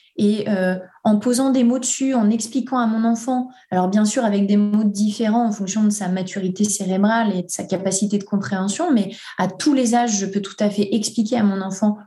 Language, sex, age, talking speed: French, female, 20-39, 225 wpm